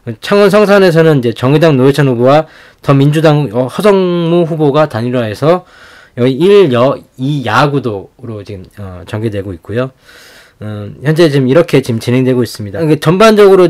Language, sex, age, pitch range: Korean, male, 20-39, 125-160 Hz